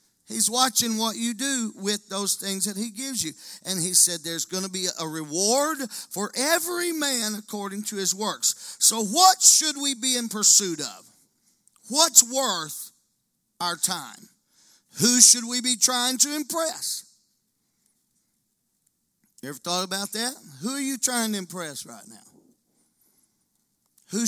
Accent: American